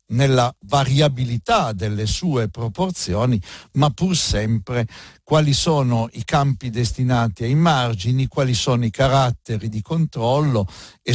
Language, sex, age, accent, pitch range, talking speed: Italian, male, 60-79, native, 110-155 Hz, 120 wpm